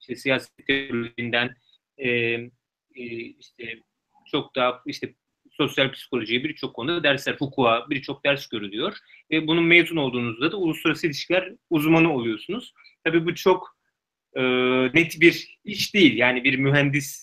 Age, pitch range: 30-49, 135-180 Hz